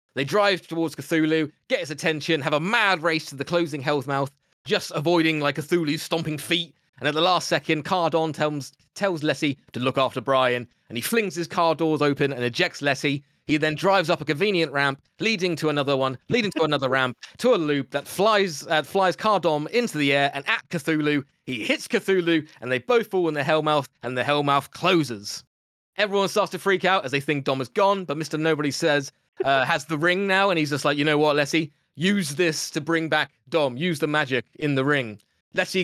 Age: 20-39